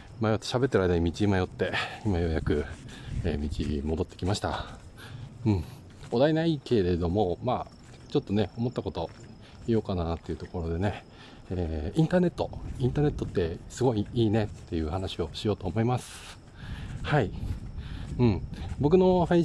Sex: male